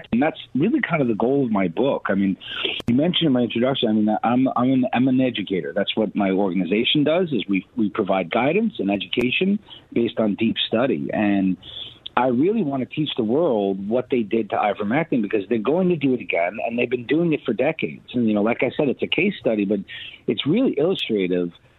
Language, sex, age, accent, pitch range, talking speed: English, male, 40-59, American, 100-135 Hz, 220 wpm